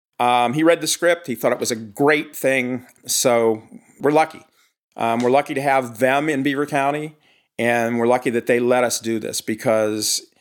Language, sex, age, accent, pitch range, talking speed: English, male, 40-59, American, 120-155 Hz, 195 wpm